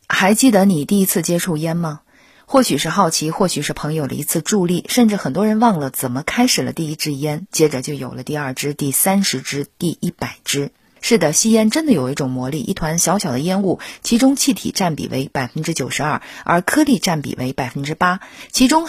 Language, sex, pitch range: Chinese, female, 145-220 Hz